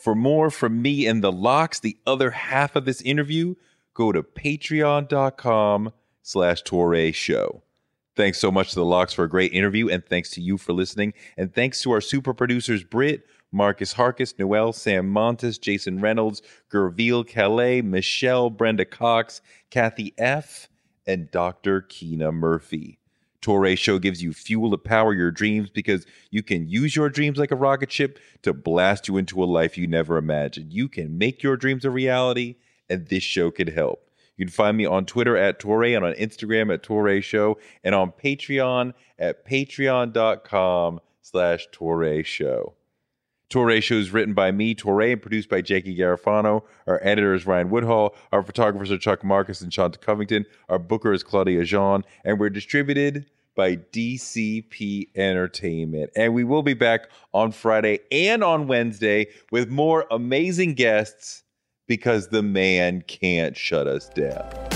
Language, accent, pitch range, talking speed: English, American, 95-125 Hz, 165 wpm